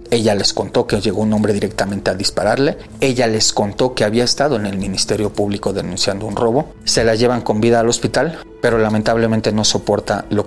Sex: male